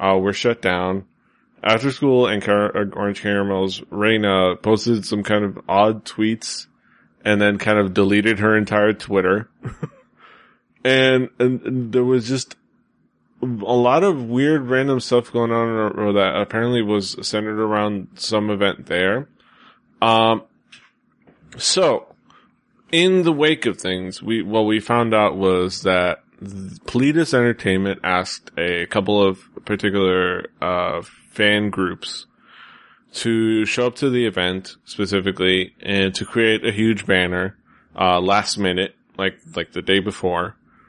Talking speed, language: 135 wpm, English